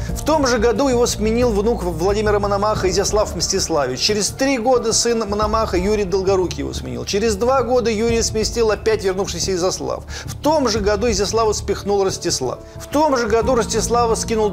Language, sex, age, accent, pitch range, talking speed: Russian, male, 40-59, native, 180-235 Hz, 170 wpm